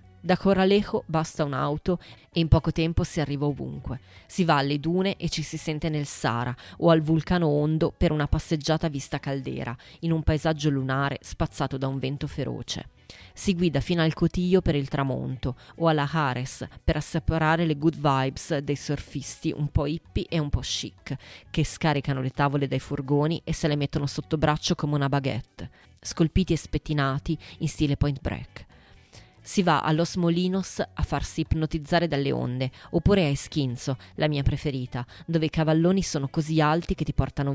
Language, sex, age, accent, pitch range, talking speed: Italian, female, 20-39, native, 135-165 Hz, 180 wpm